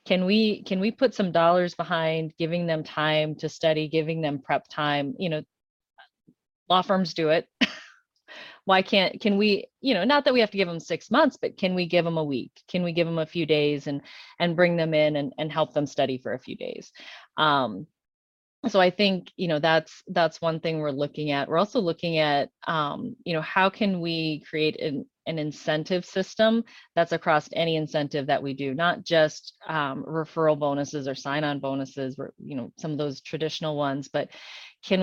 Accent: American